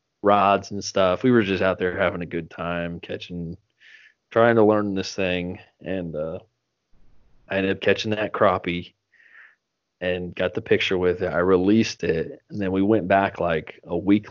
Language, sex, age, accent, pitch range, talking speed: English, male, 30-49, American, 90-105 Hz, 180 wpm